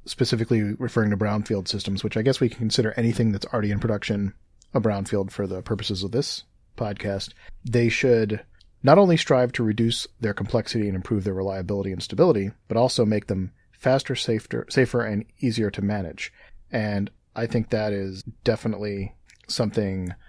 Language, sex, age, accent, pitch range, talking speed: English, male, 30-49, American, 100-115 Hz, 170 wpm